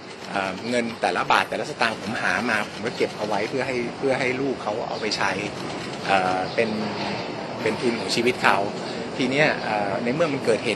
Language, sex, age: Thai, male, 20-39